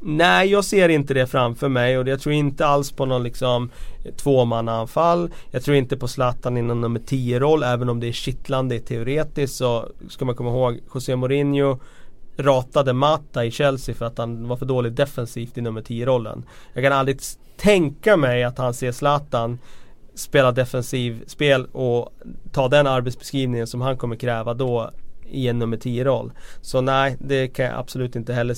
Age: 30-49